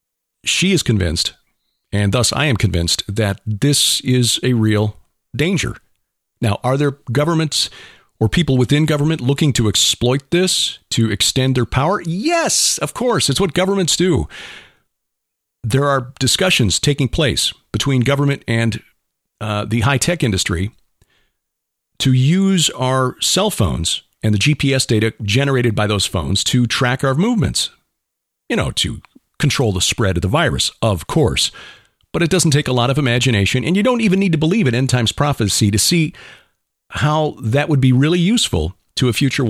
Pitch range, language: 110-145 Hz, English